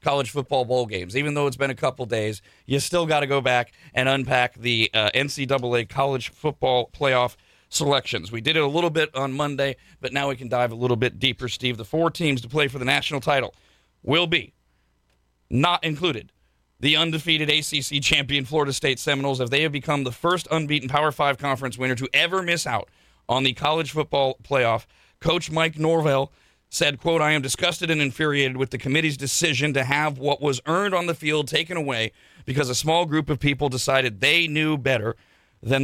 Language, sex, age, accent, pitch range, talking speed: English, male, 40-59, American, 130-155 Hz, 200 wpm